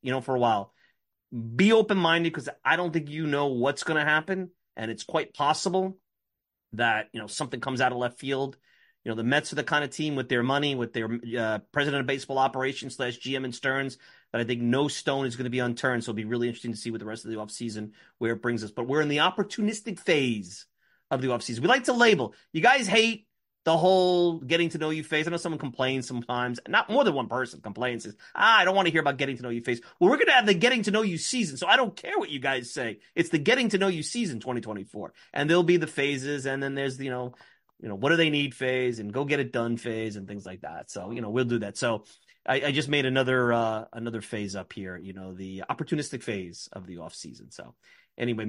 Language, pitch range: English, 120-165 Hz